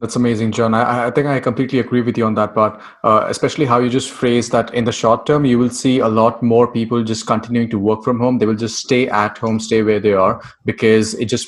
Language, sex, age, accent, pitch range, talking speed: English, male, 30-49, Indian, 110-120 Hz, 265 wpm